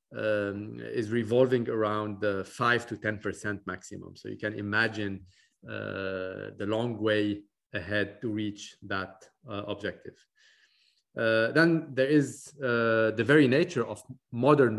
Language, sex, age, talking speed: English, male, 40-59, 140 wpm